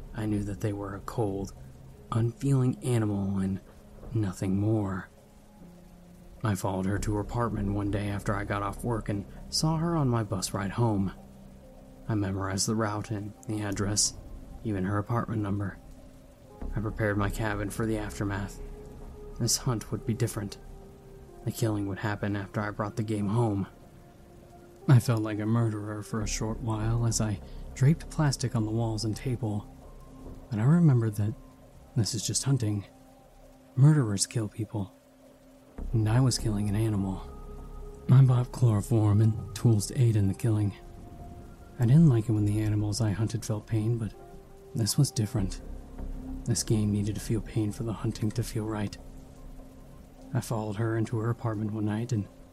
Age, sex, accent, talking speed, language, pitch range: 20-39, male, American, 170 wpm, English, 100-115 Hz